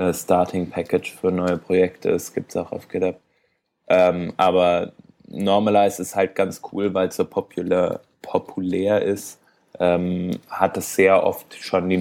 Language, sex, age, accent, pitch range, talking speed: German, male, 20-39, German, 90-95 Hz, 155 wpm